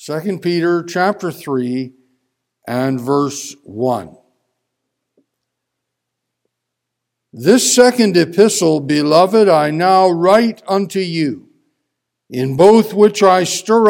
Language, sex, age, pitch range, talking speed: English, male, 60-79, 165-215 Hz, 90 wpm